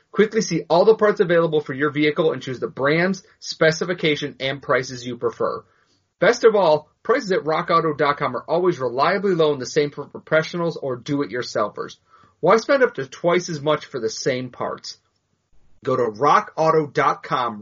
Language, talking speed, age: English, 165 wpm, 30-49